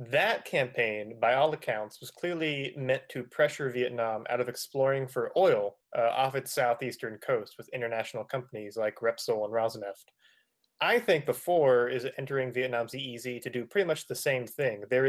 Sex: male